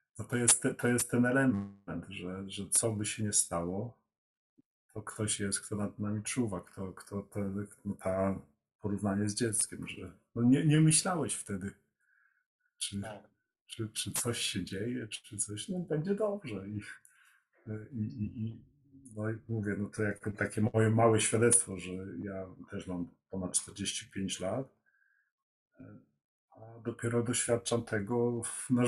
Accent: native